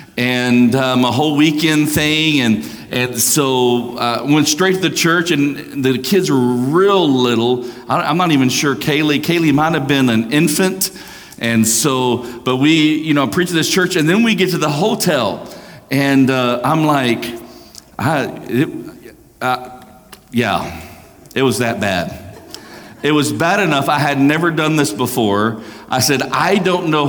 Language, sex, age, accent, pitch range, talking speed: English, male, 50-69, American, 125-160 Hz, 175 wpm